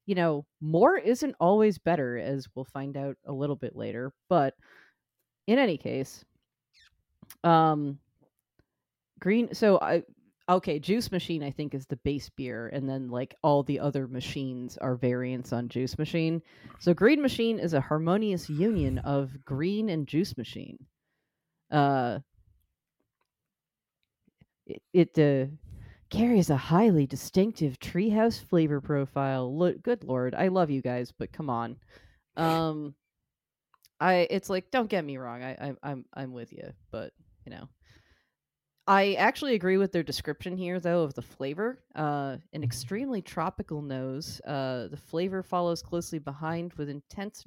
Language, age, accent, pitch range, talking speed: English, 30-49, American, 135-180 Hz, 145 wpm